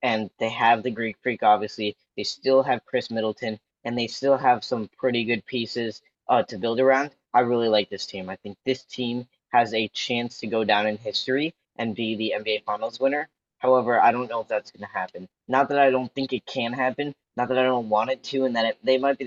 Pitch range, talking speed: 110-130 Hz, 235 wpm